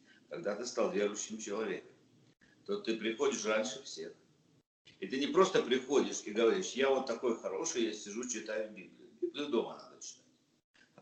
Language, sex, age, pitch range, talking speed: Russian, male, 60-79, 110-155 Hz, 165 wpm